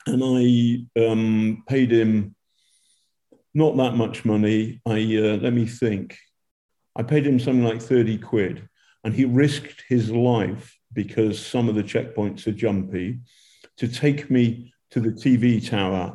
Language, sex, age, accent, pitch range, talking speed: English, male, 50-69, British, 110-130 Hz, 150 wpm